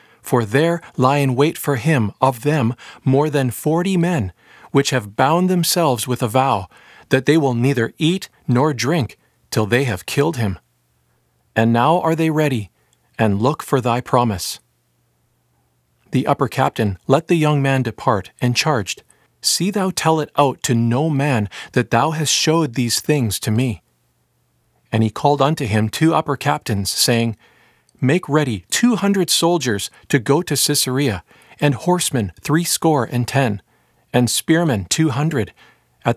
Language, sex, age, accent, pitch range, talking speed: English, male, 40-59, American, 110-155 Hz, 160 wpm